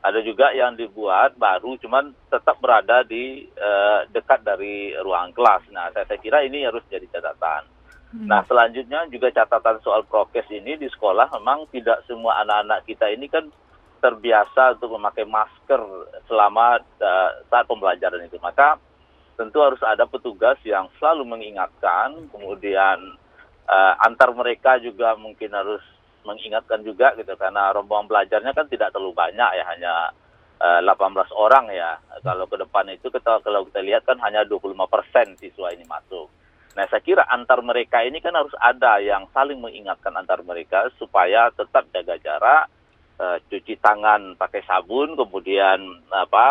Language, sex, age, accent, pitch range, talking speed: Indonesian, male, 30-49, native, 100-125 Hz, 150 wpm